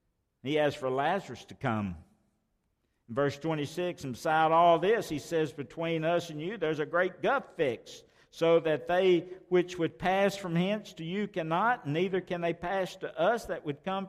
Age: 60-79